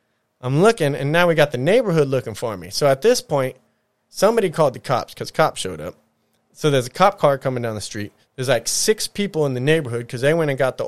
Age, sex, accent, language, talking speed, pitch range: 20-39, male, American, English, 250 wpm, 125-165 Hz